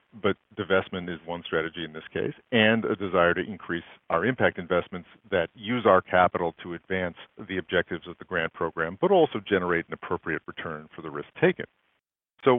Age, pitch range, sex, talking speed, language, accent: 50-69, 85-105 Hz, male, 185 wpm, English, American